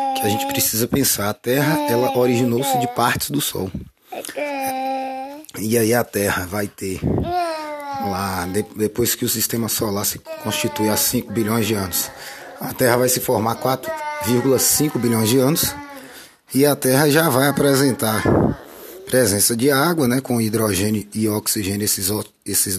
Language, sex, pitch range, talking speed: Portuguese, male, 105-140 Hz, 155 wpm